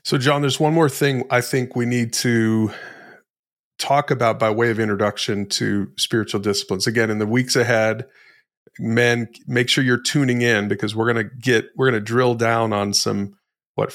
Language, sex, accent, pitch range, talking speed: English, male, American, 110-130 Hz, 190 wpm